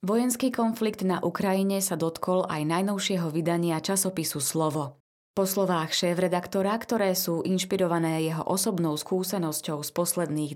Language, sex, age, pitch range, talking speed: Slovak, female, 20-39, 165-200 Hz, 125 wpm